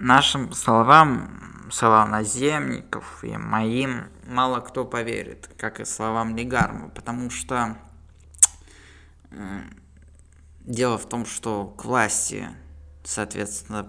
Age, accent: 20-39, native